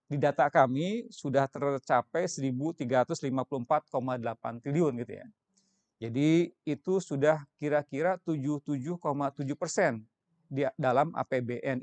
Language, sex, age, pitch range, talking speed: Indonesian, male, 40-59, 135-170 Hz, 90 wpm